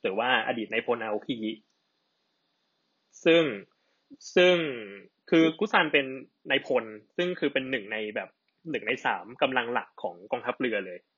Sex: male